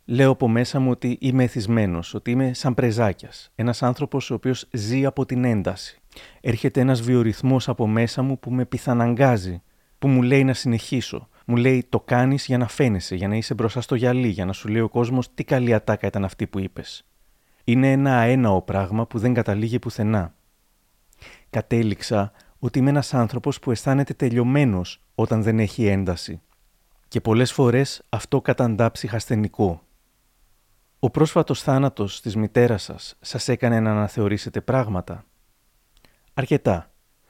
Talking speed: 155 wpm